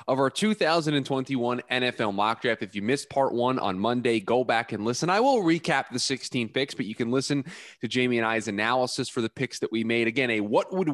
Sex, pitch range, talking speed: male, 110-135 Hz, 230 wpm